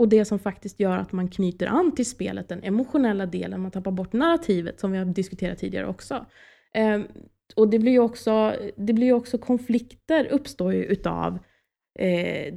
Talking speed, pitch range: 165 wpm, 180-220 Hz